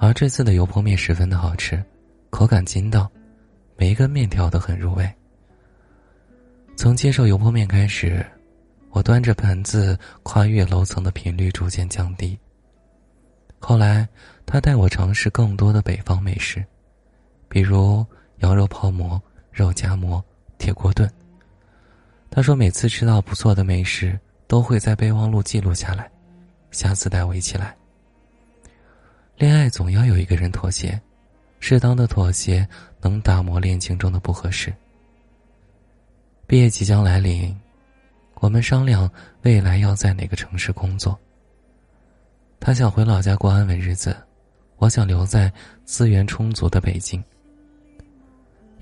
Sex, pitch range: male, 90-110 Hz